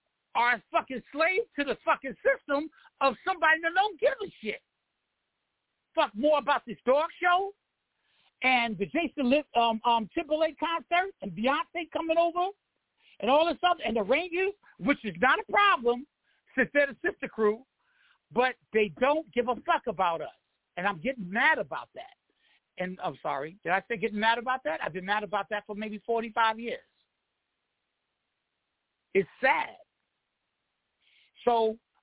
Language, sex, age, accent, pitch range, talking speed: English, male, 60-79, American, 210-300 Hz, 160 wpm